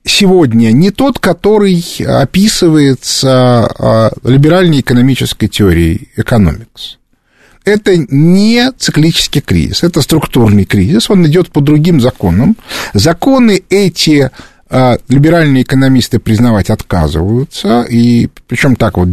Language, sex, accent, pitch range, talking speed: Russian, male, native, 120-185 Hz, 95 wpm